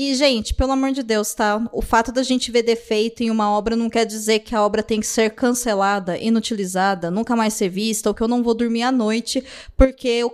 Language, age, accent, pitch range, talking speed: Portuguese, 20-39, Brazilian, 220-265 Hz, 240 wpm